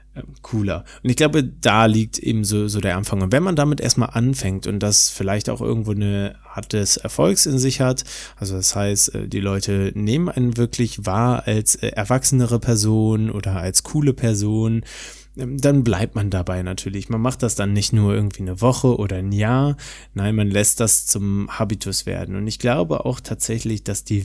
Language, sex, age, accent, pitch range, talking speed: German, male, 20-39, German, 105-135 Hz, 190 wpm